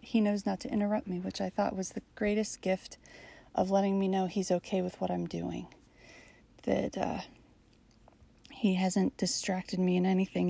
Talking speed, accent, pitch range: 175 wpm, American, 175-205 Hz